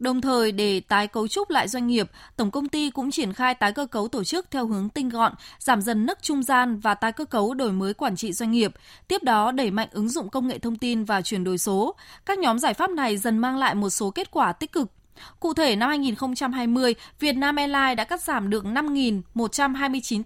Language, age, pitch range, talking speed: Vietnamese, 20-39, 215-285 Hz, 235 wpm